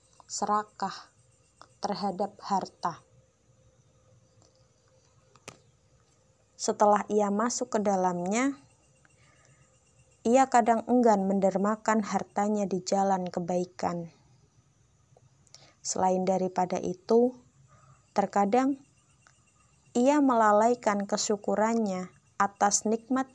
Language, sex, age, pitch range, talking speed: Indonesian, female, 20-39, 180-215 Hz, 65 wpm